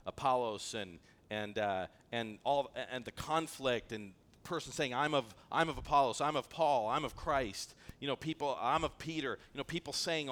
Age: 40-59